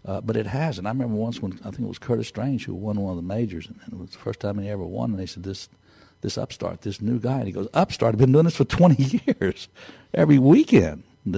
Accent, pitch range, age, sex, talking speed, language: American, 95-125 Hz, 60-79, male, 270 wpm, English